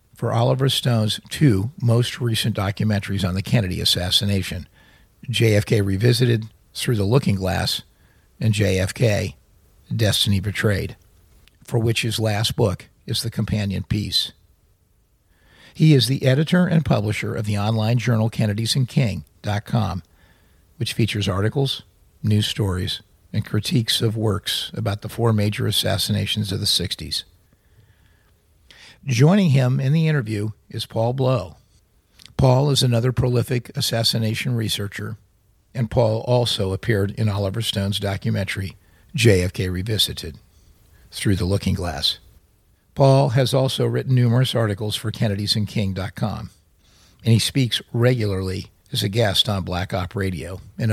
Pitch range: 95-120 Hz